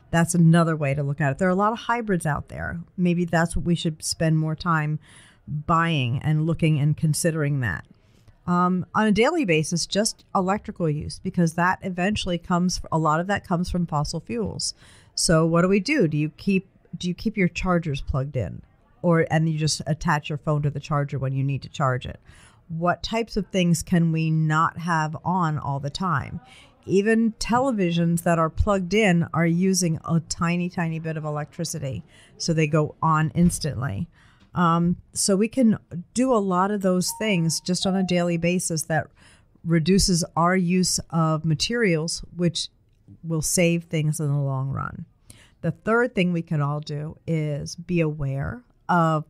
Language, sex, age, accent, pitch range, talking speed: English, female, 40-59, American, 150-180 Hz, 185 wpm